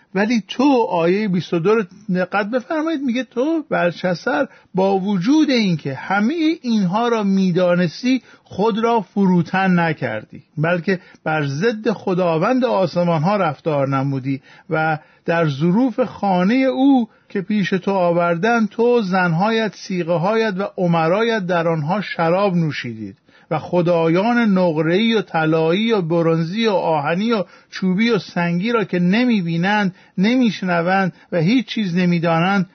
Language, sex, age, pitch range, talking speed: Persian, male, 50-69, 170-220 Hz, 125 wpm